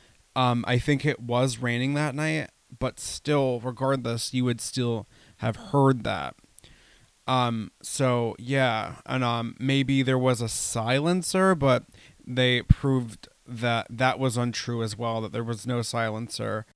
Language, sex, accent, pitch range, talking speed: English, male, American, 115-135 Hz, 145 wpm